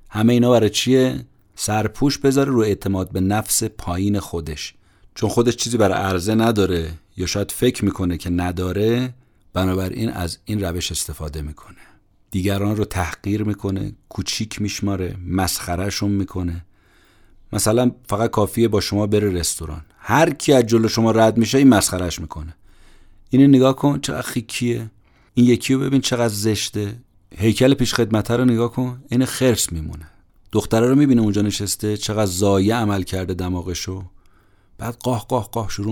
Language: Persian